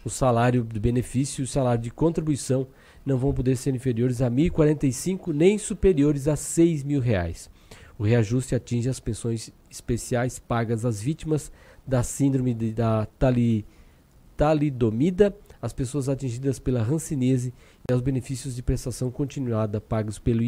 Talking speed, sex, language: 150 wpm, male, Portuguese